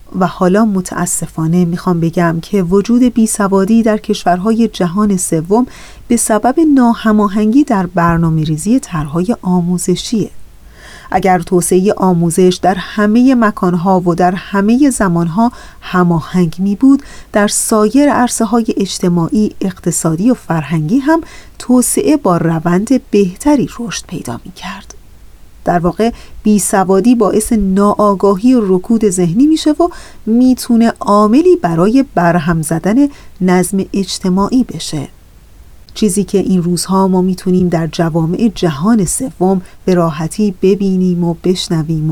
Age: 40-59